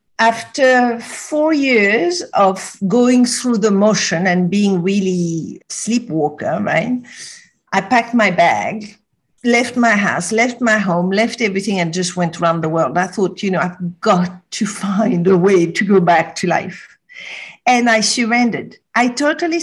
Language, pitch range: English, 205-250 Hz